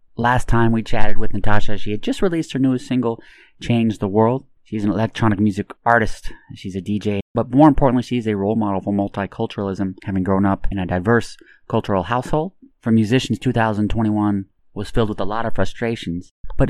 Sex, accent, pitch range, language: male, American, 100-120 Hz, English